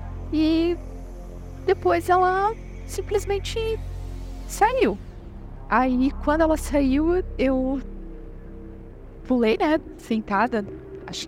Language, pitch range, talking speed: Portuguese, 185-270 Hz, 75 wpm